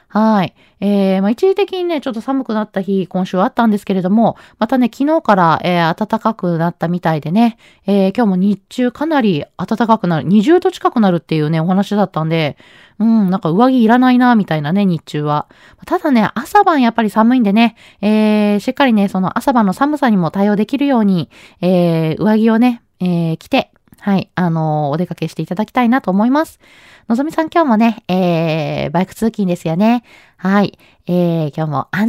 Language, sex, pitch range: Japanese, female, 185-265 Hz